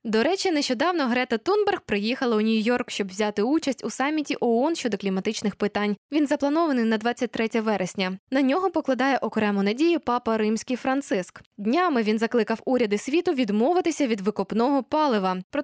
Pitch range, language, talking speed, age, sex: 205-290 Hz, Ukrainian, 155 wpm, 10-29, female